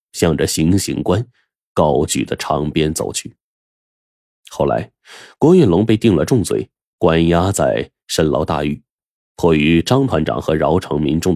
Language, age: Chinese, 30-49